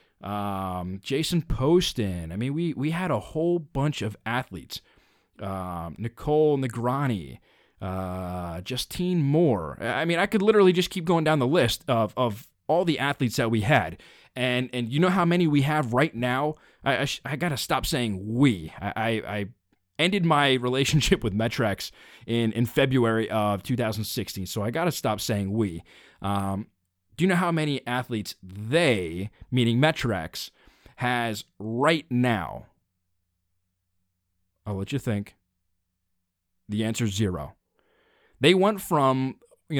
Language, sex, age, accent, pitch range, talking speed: English, male, 20-39, American, 105-150 Hz, 150 wpm